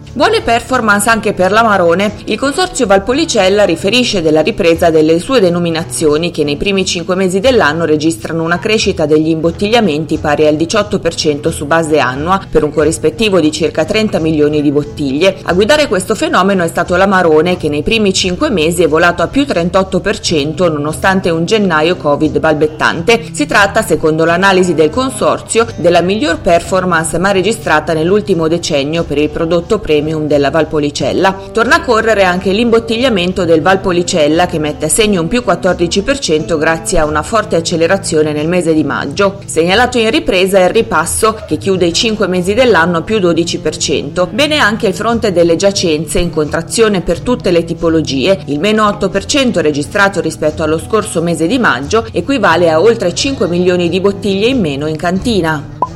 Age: 30-49